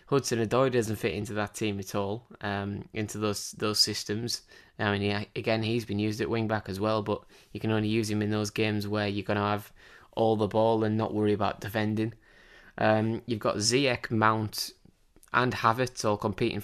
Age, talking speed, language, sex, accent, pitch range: 20-39, 205 wpm, English, male, British, 105-115 Hz